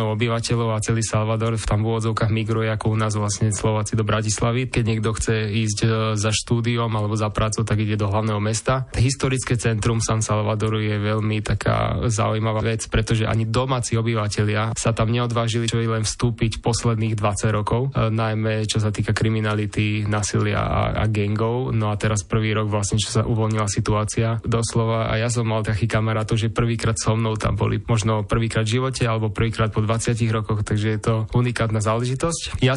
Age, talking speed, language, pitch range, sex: 20-39, 180 wpm, Slovak, 110-115 Hz, male